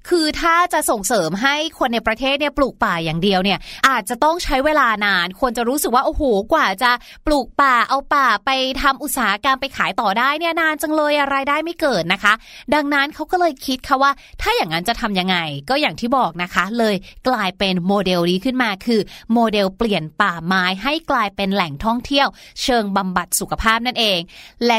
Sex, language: female, Thai